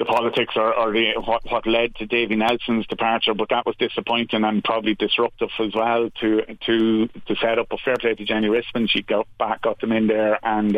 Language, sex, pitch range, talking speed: English, male, 110-125 Hz, 225 wpm